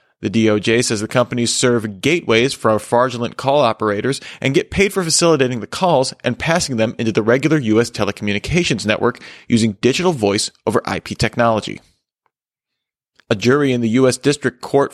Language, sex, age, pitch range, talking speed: English, male, 30-49, 115-150 Hz, 165 wpm